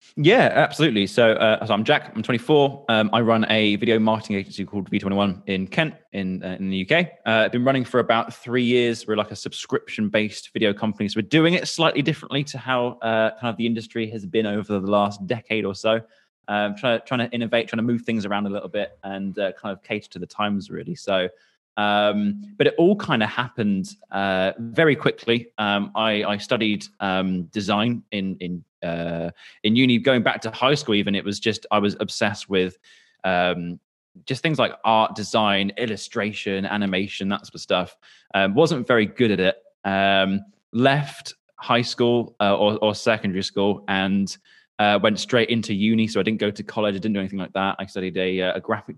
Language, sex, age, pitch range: English, male, 20-39, 100-115 Hz